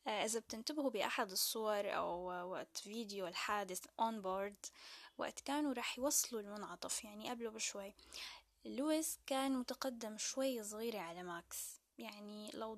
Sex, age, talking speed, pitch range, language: female, 10-29, 125 wpm, 205-255 Hz, Arabic